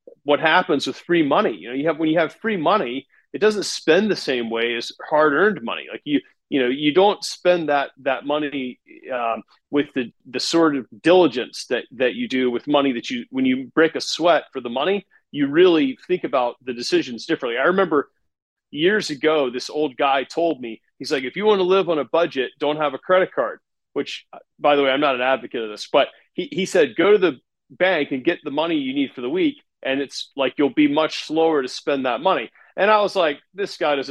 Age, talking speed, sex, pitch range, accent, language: 30-49, 235 wpm, male, 135-205 Hz, American, English